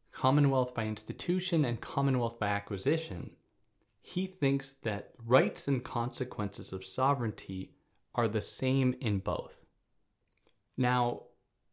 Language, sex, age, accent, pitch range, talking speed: English, male, 20-39, American, 105-130 Hz, 105 wpm